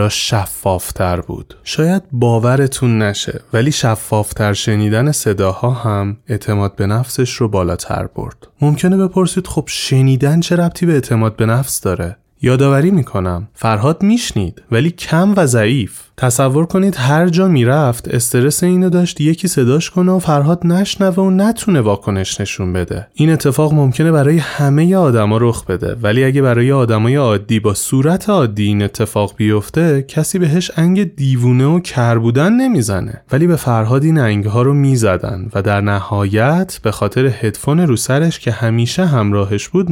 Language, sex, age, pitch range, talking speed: Persian, male, 30-49, 105-145 Hz, 145 wpm